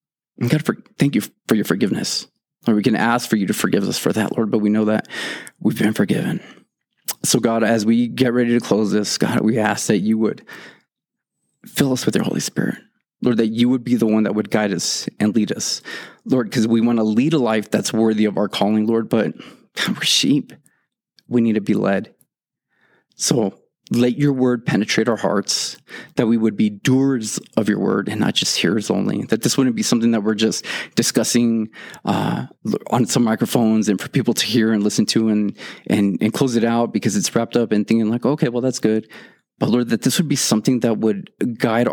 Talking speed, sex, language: 215 wpm, male, English